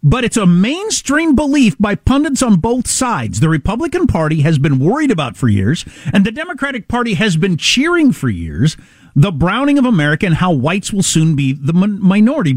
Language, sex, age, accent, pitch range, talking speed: English, male, 50-69, American, 155-245 Hz, 190 wpm